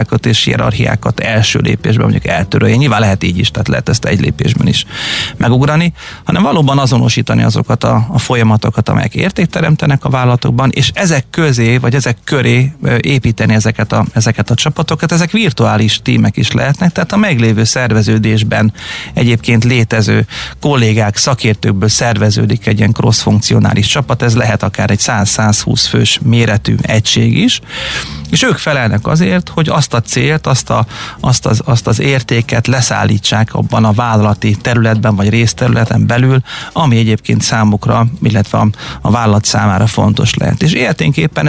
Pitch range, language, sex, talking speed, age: 110-135 Hz, Hungarian, male, 145 wpm, 30-49